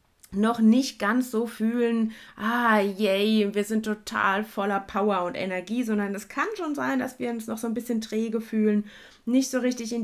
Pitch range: 190-230 Hz